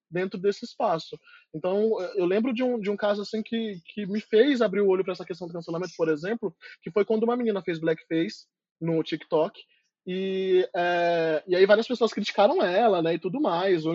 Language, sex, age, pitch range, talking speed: Portuguese, male, 20-39, 175-215 Hz, 205 wpm